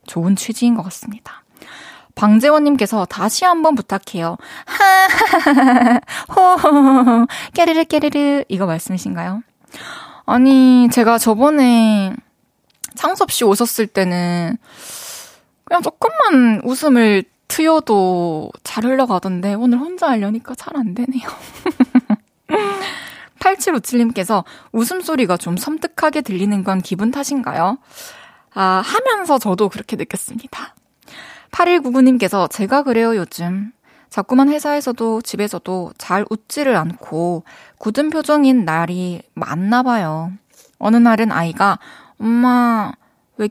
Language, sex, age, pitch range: Korean, female, 20-39, 200-285 Hz